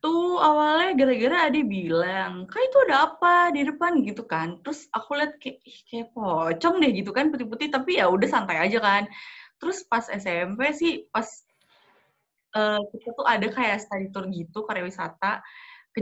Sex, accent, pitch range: female, native, 205-300 Hz